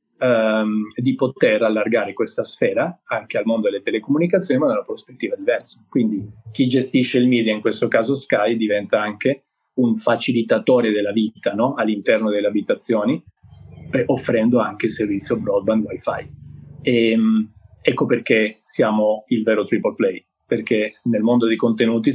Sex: male